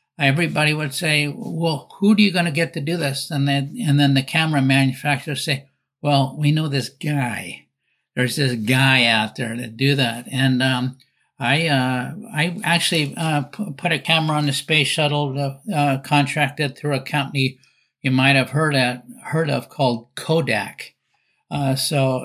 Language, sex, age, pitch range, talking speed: English, male, 60-79, 130-150 Hz, 175 wpm